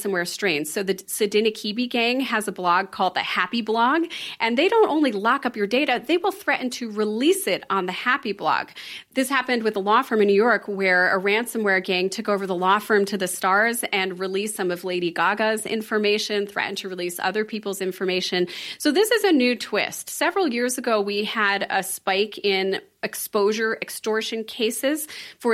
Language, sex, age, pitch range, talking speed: English, female, 30-49, 195-250 Hz, 195 wpm